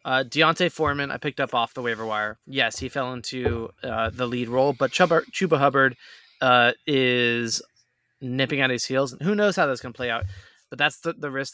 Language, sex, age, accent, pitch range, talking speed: English, male, 20-39, American, 120-155 Hz, 210 wpm